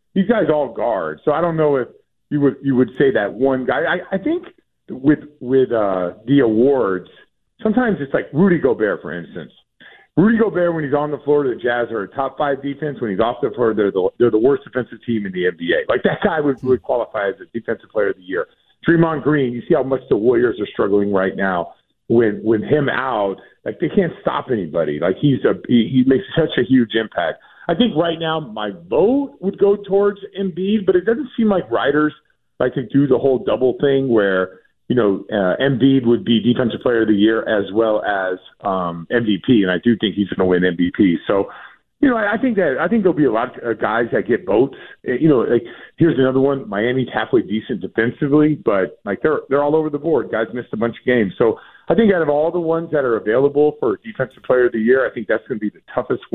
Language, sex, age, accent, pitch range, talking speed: English, male, 50-69, American, 115-170 Hz, 235 wpm